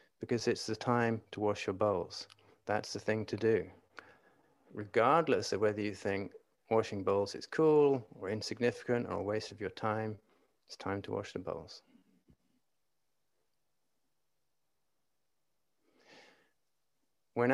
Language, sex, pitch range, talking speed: English, male, 110-130 Hz, 125 wpm